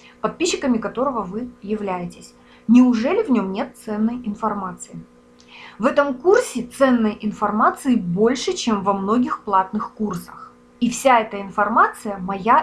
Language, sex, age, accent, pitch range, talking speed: Russian, female, 20-39, native, 195-260 Hz, 125 wpm